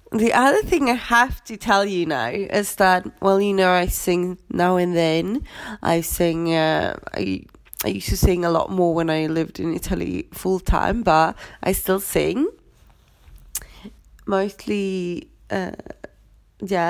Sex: female